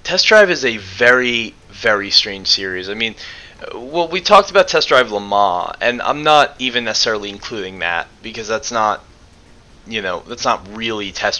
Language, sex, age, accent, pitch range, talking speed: English, male, 20-39, American, 90-110 Hz, 175 wpm